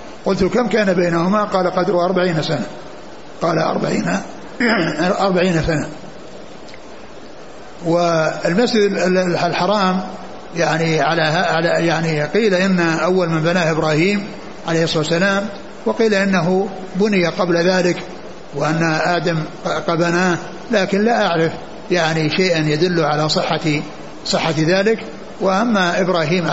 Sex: male